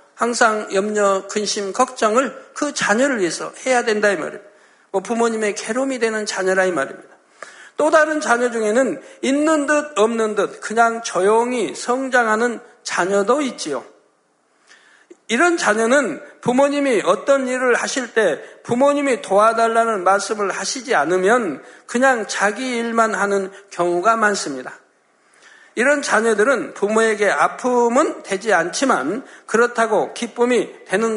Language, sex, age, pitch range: Korean, male, 60-79, 200-250 Hz